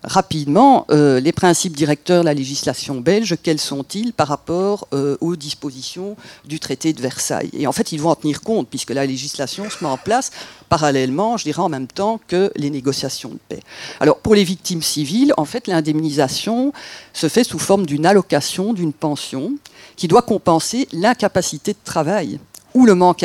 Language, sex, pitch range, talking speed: French, female, 150-210 Hz, 185 wpm